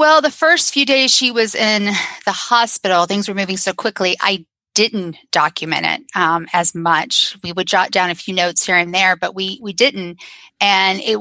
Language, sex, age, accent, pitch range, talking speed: English, female, 30-49, American, 175-220 Hz, 205 wpm